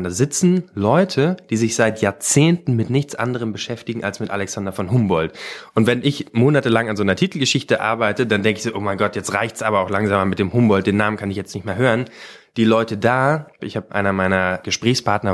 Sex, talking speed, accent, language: male, 220 wpm, German, German